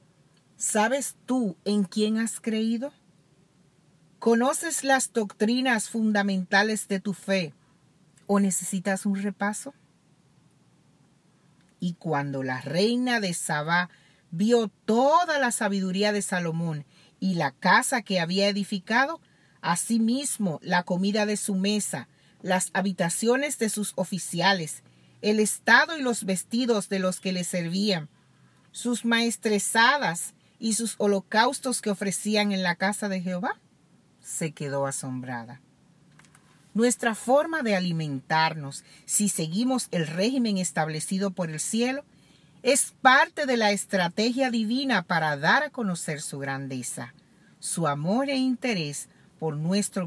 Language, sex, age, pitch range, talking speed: Spanish, female, 40-59, 165-225 Hz, 120 wpm